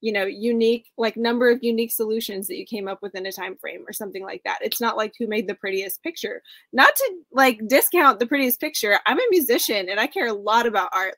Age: 10-29